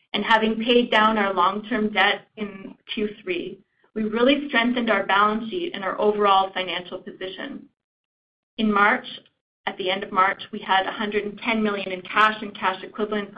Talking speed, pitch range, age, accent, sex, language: 160 wpm, 195-230 Hz, 30-49, American, female, English